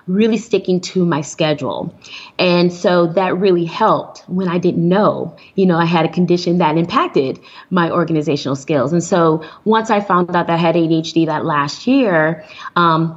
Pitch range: 170-215 Hz